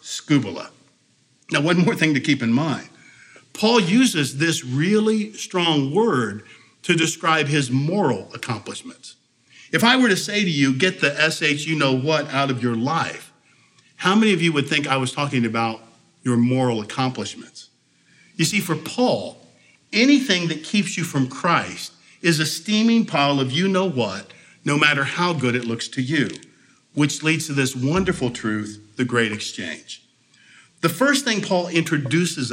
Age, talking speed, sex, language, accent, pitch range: 50-69, 155 wpm, male, English, American, 130-190 Hz